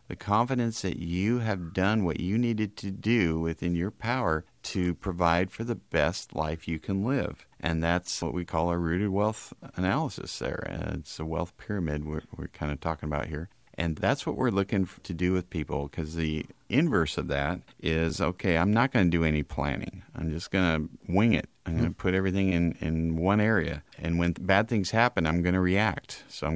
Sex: male